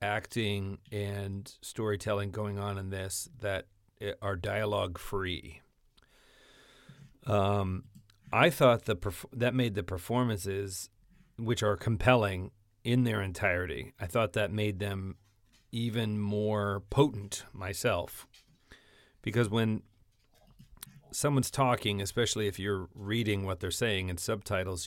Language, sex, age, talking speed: English, male, 40-59, 115 wpm